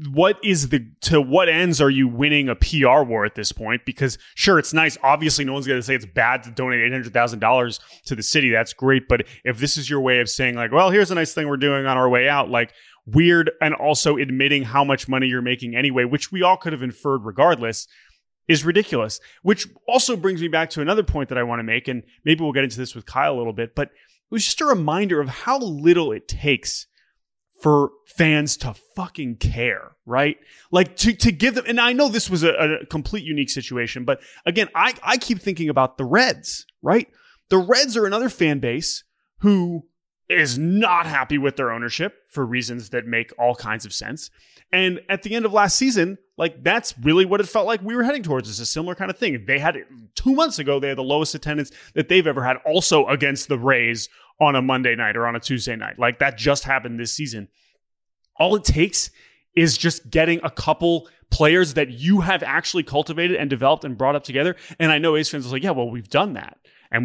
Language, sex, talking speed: English, male, 225 wpm